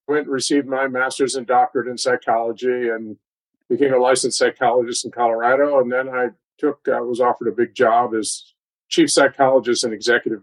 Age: 50-69